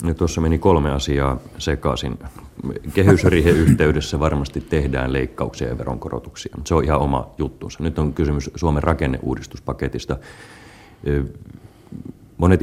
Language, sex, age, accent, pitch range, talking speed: Finnish, male, 30-49, native, 65-80 Hz, 125 wpm